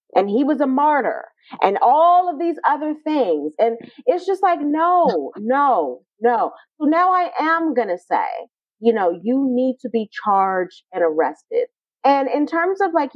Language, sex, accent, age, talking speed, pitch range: English, female, American, 30-49, 180 wpm, 230-330 Hz